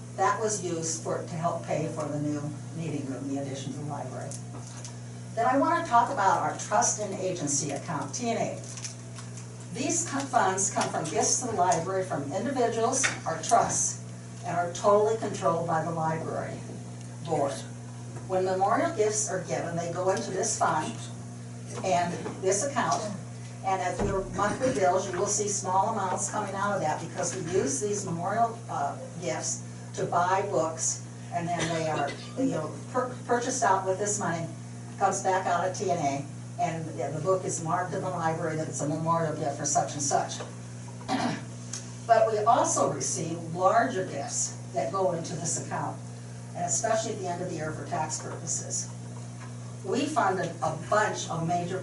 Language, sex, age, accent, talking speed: English, female, 60-79, American, 170 wpm